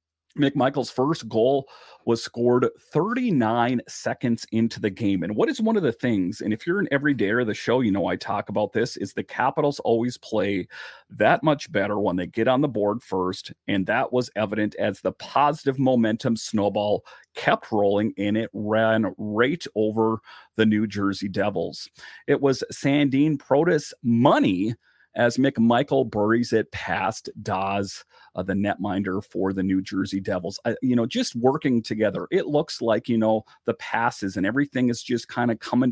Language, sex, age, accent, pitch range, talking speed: English, male, 40-59, American, 105-130 Hz, 175 wpm